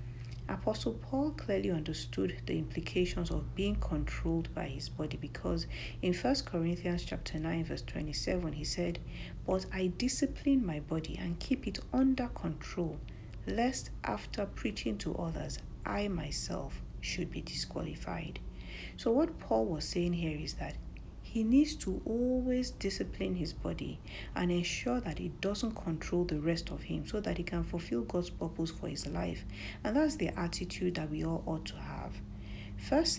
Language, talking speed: English, 160 wpm